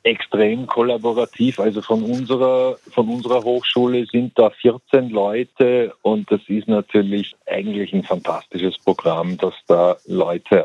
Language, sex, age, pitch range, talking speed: German, male, 50-69, 100-120 Hz, 130 wpm